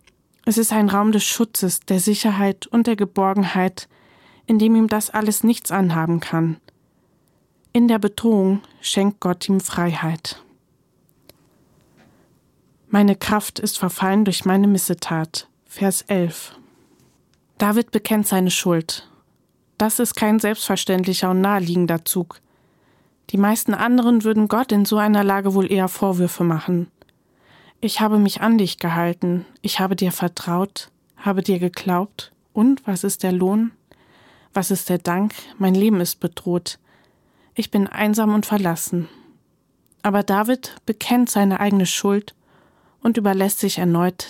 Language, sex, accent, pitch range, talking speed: German, female, German, 180-215 Hz, 135 wpm